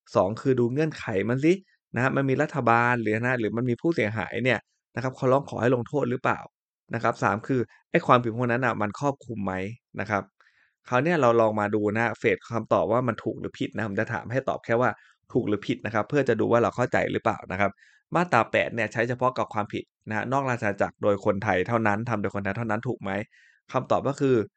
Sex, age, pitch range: male, 20-39, 105-130 Hz